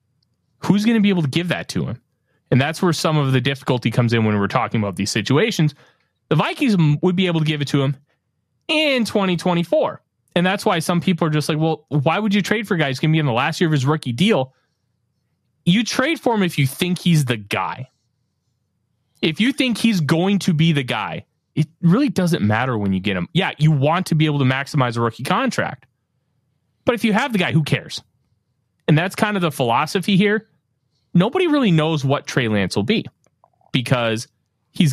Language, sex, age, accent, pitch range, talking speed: English, male, 30-49, American, 125-180 Hz, 215 wpm